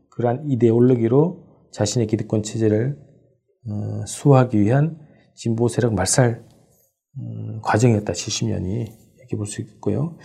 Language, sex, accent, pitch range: Korean, male, native, 110-140 Hz